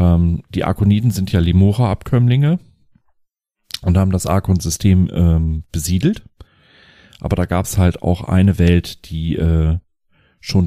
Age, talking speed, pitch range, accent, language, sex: 40-59, 130 wpm, 85-100 Hz, German, German, male